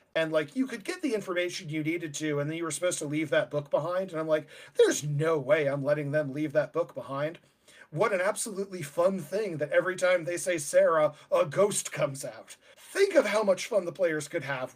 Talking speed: 230 wpm